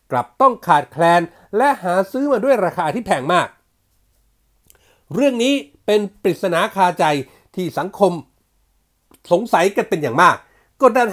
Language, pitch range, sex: Thai, 165-235 Hz, male